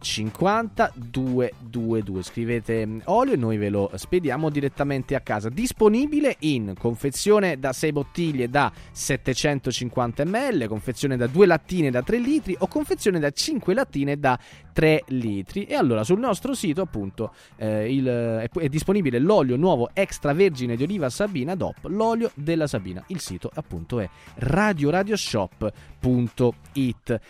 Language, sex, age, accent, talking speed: Italian, male, 30-49, native, 140 wpm